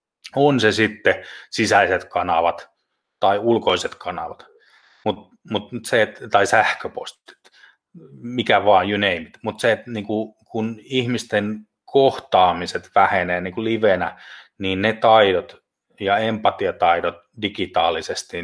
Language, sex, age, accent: Finnish, male, 30-49, native